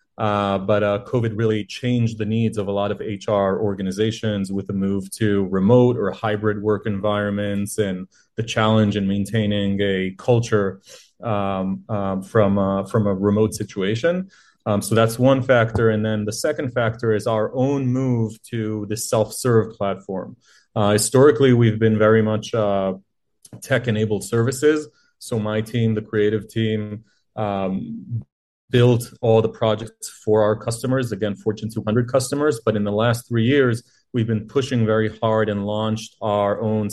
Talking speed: 160 wpm